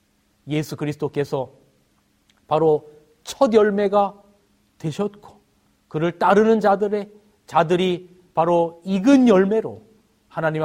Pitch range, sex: 150-185 Hz, male